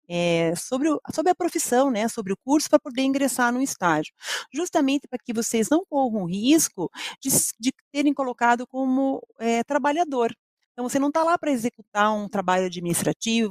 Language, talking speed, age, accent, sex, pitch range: Portuguese, 180 wpm, 40-59, Brazilian, female, 195-270 Hz